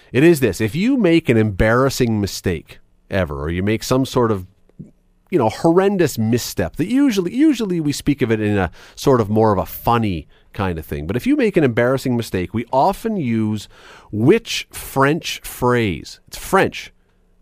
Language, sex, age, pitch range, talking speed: English, male, 40-59, 95-145 Hz, 185 wpm